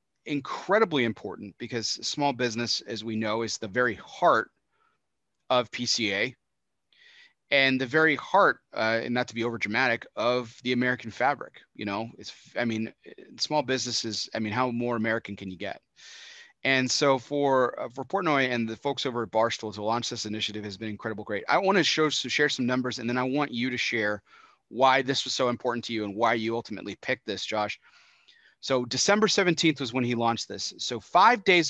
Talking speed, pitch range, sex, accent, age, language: 200 wpm, 110-140 Hz, male, American, 30-49, English